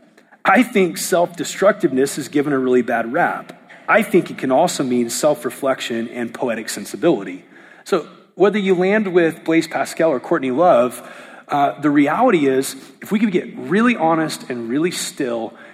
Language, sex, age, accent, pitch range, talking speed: English, male, 30-49, American, 125-180 Hz, 160 wpm